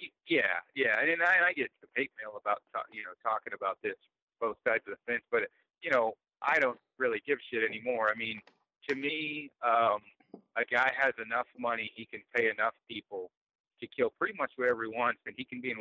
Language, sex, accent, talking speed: English, male, American, 225 wpm